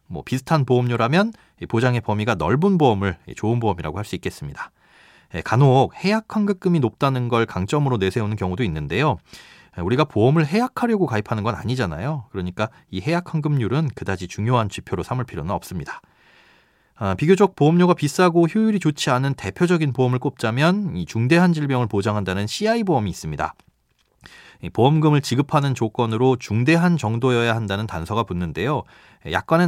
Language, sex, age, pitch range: Korean, male, 30-49, 105-160 Hz